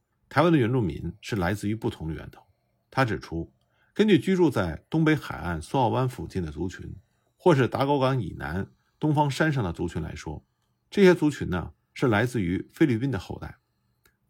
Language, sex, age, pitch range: Chinese, male, 50-69, 90-145 Hz